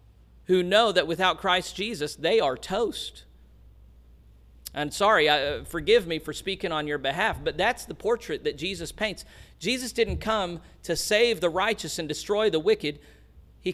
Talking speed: 165 wpm